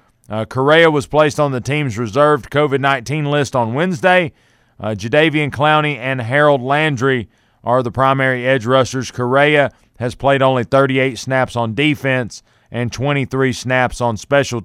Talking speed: 150 wpm